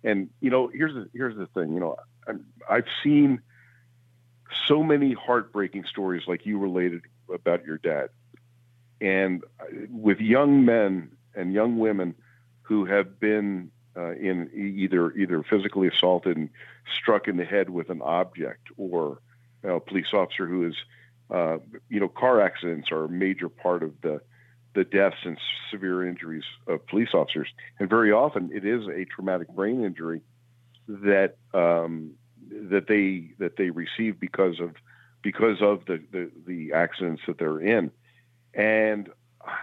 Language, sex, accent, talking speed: English, male, American, 155 wpm